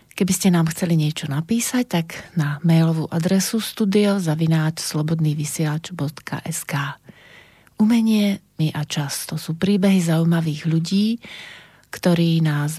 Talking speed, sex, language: 105 wpm, female, Slovak